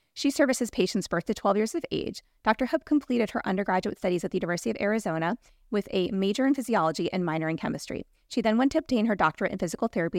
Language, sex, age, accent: English, female, 30-49, American